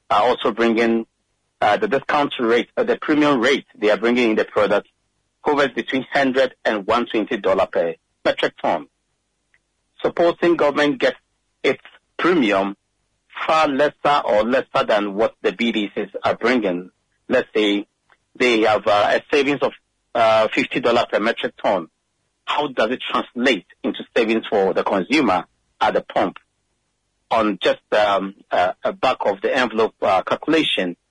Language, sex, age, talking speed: English, male, 50-69, 145 wpm